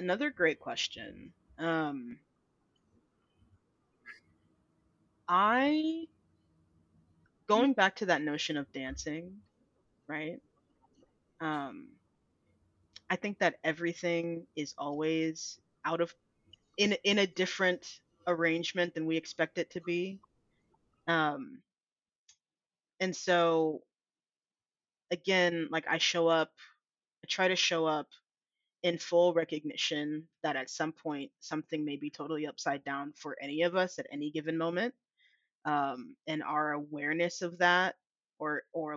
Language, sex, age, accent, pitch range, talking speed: English, female, 20-39, American, 150-175 Hz, 115 wpm